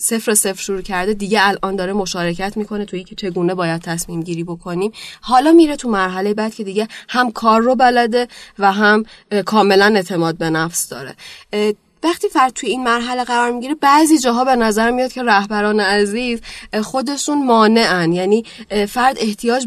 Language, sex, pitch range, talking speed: Persian, female, 195-240 Hz, 165 wpm